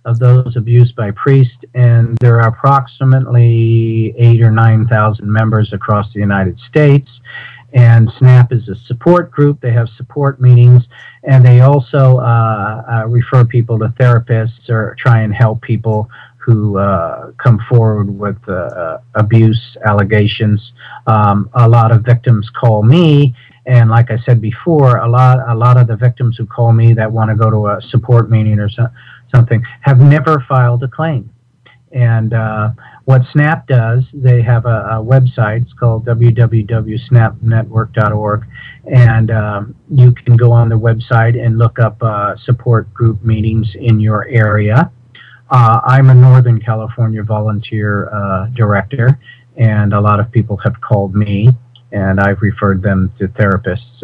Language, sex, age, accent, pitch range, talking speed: English, male, 50-69, American, 110-125 Hz, 160 wpm